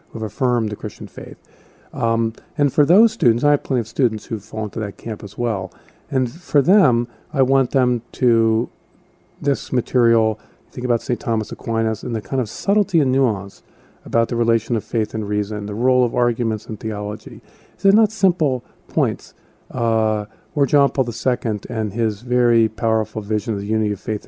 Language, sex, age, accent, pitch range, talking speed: English, male, 50-69, American, 110-130 Hz, 190 wpm